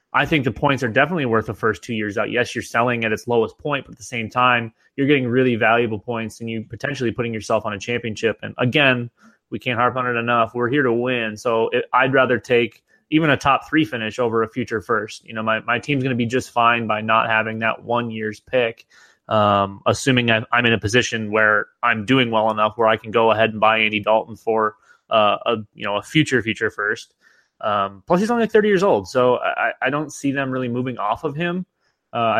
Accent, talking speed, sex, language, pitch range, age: American, 240 wpm, male, English, 110-130 Hz, 20-39